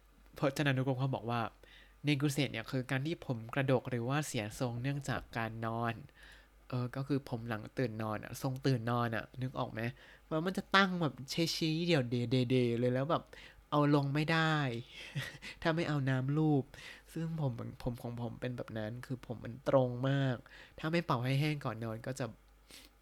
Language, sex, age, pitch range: Thai, male, 20-39, 125-150 Hz